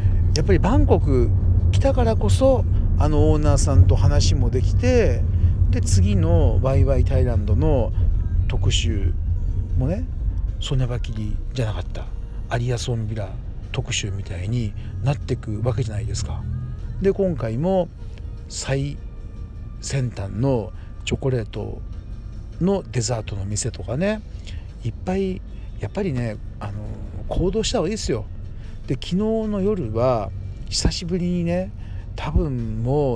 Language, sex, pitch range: Japanese, male, 90-110 Hz